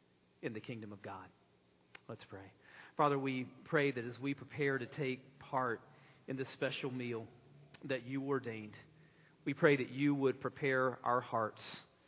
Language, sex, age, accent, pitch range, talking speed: English, male, 40-59, American, 120-150 Hz, 160 wpm